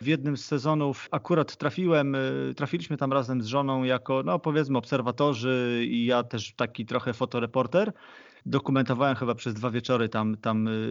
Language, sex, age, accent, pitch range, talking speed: Polish, male, 30-49, native, 130-160 Hz, 155 wpm